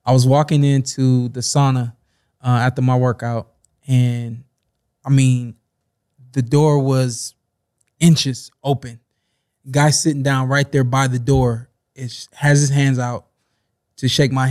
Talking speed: 140 wpm